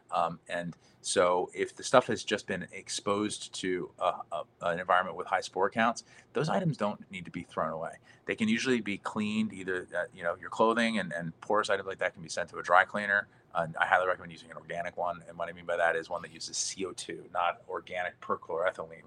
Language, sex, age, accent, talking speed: English, male, 30-49, American, 220 wpm